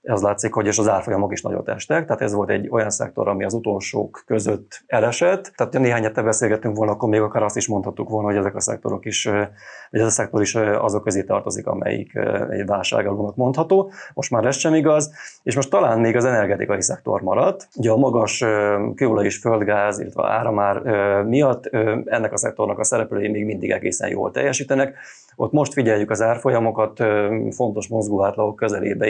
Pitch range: 105-125 Hz